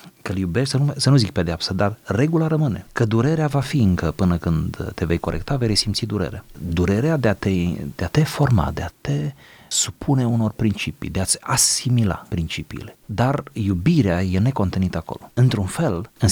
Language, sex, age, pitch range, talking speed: Romanian, male, 30-49, 90-120 Hz, 190 wpm